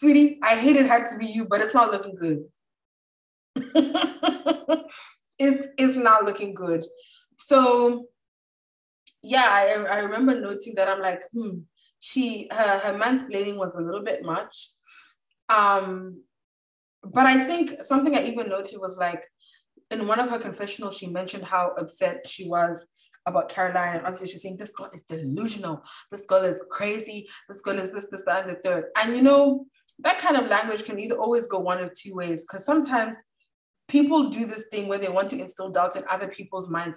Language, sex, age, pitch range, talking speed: English, female, 20-39, 185-255 Hz, 185 wpm